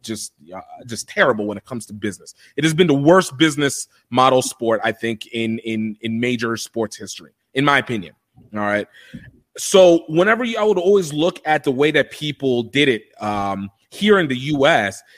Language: English